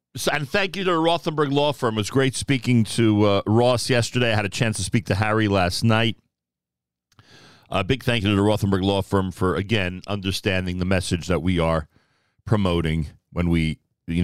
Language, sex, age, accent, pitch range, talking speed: English, male, 40-59, American, 85-110 Hz, 200 wpm